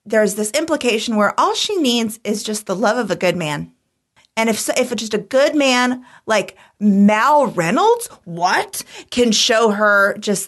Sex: female